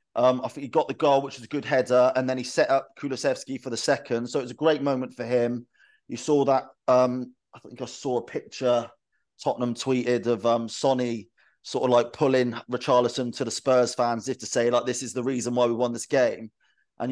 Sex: male